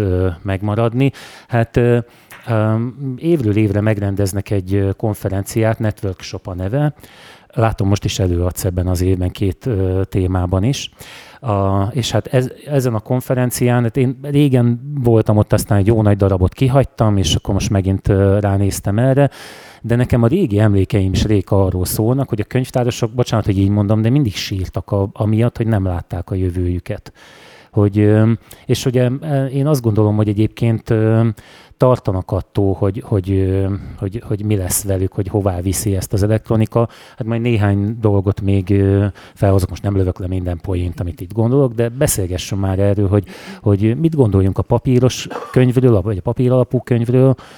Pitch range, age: 95-120 Hz, 30-49